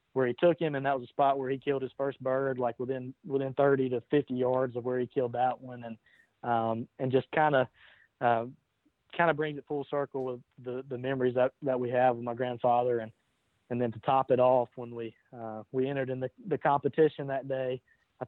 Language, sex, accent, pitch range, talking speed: English, male, American, 120-135 Hz, 235 wpm